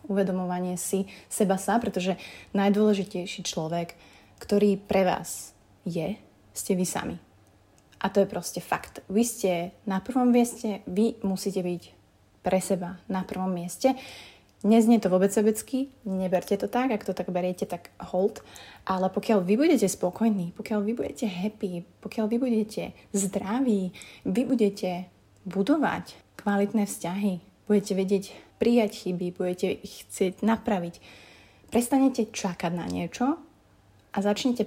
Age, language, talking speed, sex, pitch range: 30-49, Slovak, 135 wpm, female, 185-220 Hz